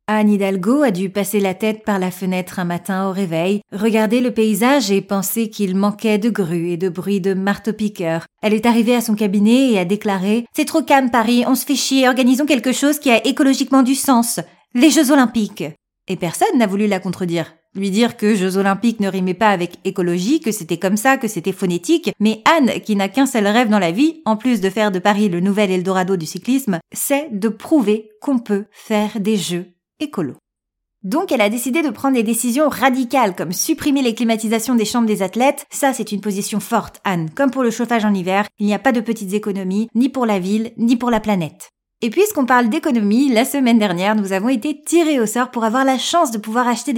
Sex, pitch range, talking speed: female, 200-260 Hz, 225 wpm